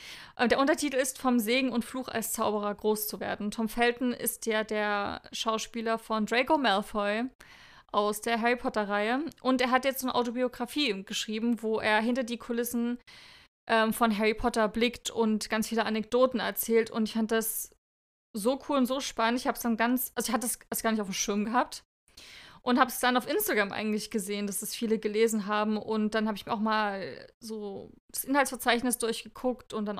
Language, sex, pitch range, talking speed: German, female, 215-245 Hz, 195 wpm